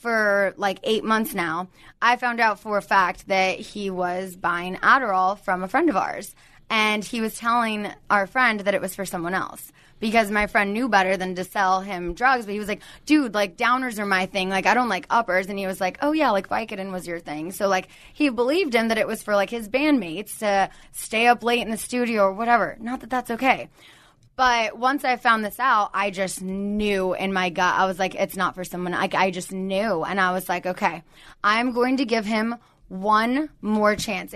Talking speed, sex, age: 225 wpm, female, 20-39